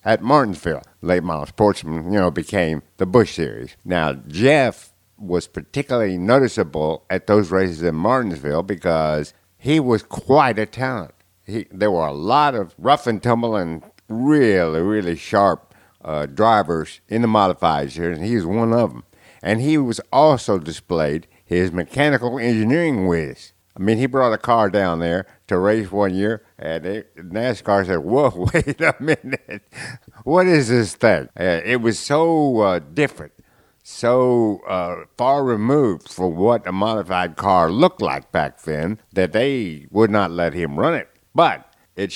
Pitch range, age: 90-120 Hz, 60-79